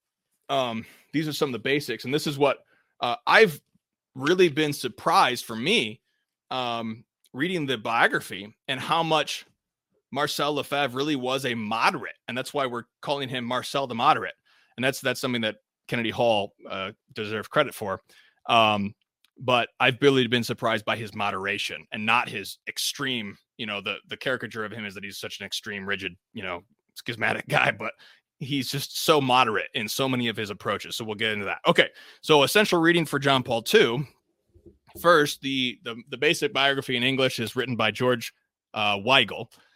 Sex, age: male, 30-49